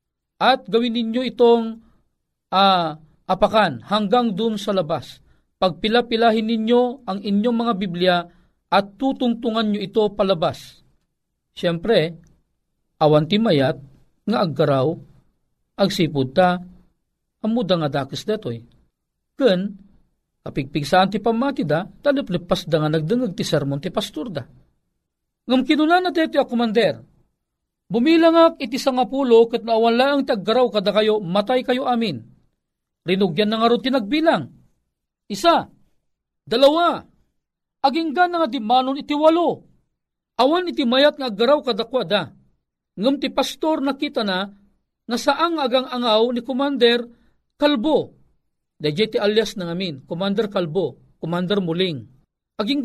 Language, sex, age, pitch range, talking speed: Filipino, male, 40-59, 180-260 Hz, 105 wpm